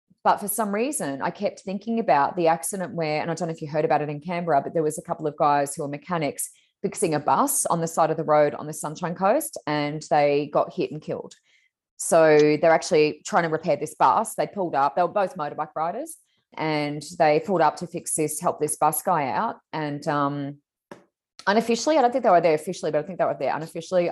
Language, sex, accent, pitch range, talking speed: English, female, Australian, 155-195 Hz, 240 wpm